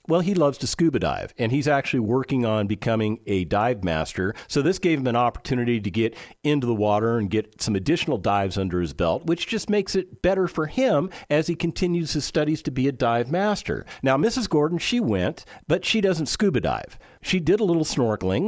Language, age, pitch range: English, 50-69, 120-195 Hz